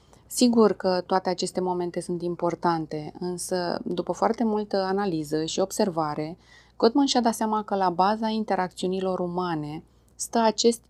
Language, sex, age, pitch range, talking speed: Romanian, female, 20-39, 165-210 Hz, 140 wpm